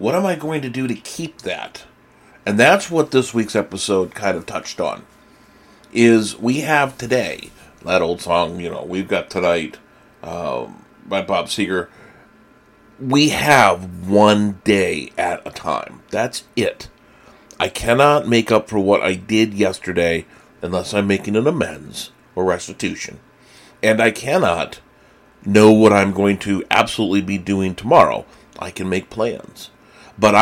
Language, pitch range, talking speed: English, 90-120 Hz, 150 wpm